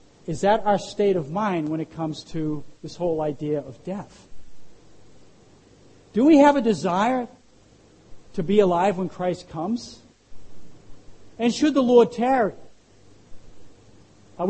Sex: male